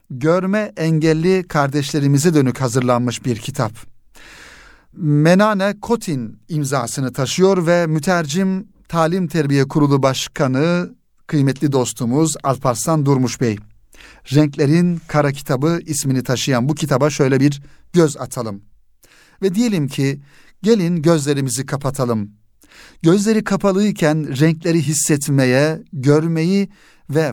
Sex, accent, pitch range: male, native, 130-170 Hz